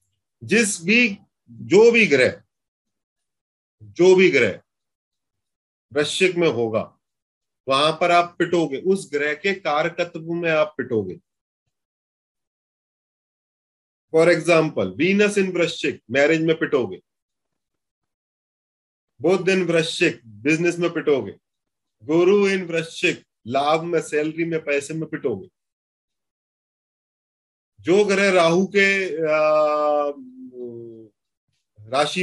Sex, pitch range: male, 135-185 Hz